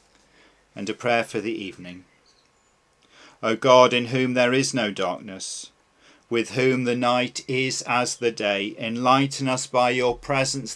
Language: English